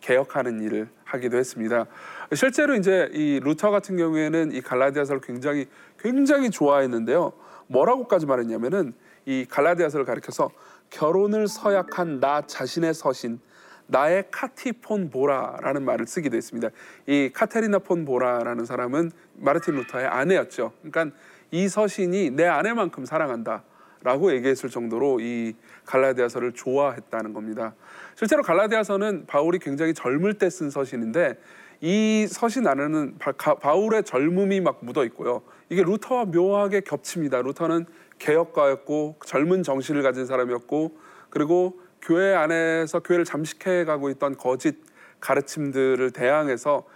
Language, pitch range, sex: Korean, 130-190 Hz, male